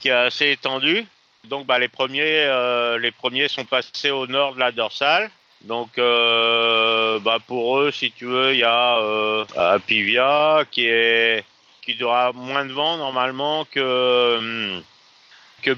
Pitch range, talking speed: 110-130 Hz, 160 wpm